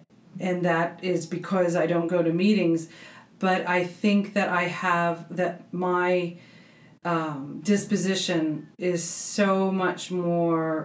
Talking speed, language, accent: 125 wpm, English, American